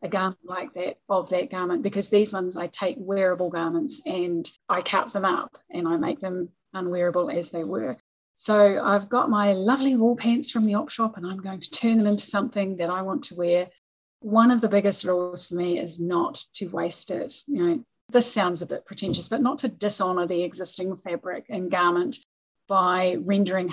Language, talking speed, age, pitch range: English, 205 wpm, 30-49, 180-220 Hz